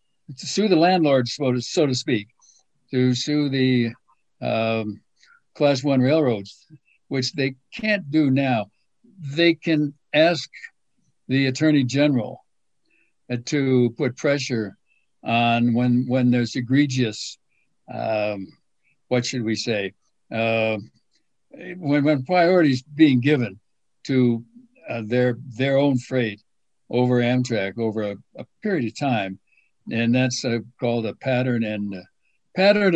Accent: American